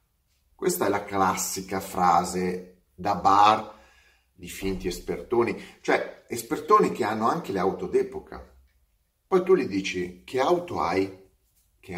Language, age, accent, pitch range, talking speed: Italian, 30-49, native, 85-110 Hz, 130 wpm